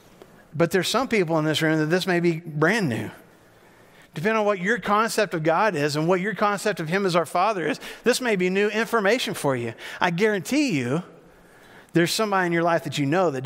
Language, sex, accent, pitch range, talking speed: English, male, American, 160-205 Hz, 225 wpm